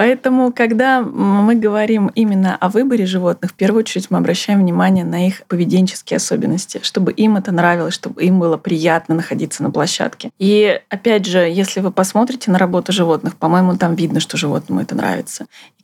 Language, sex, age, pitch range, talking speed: Russian, female, 20-39, 175-215 Hz, 175 wpm